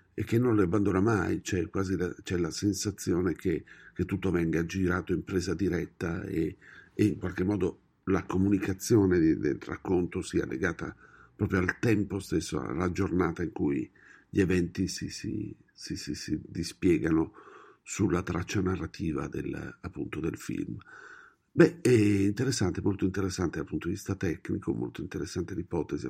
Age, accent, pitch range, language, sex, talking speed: 50-69, native, 90-105 Hz, Italian, male, 155 wpm